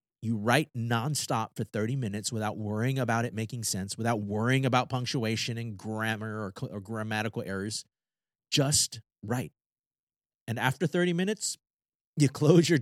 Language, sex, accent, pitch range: English, male, American, 110-140 Hz